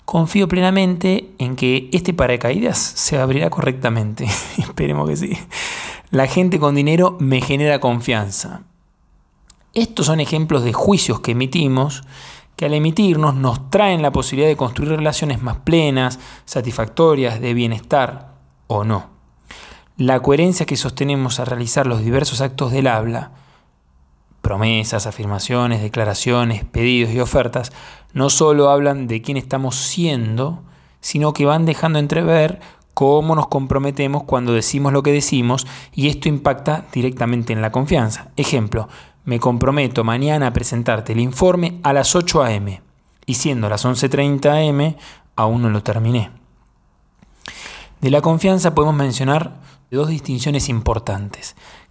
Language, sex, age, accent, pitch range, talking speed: Spanish, male, 20-39, Argentinian, 120-150 Hz, 135 wpm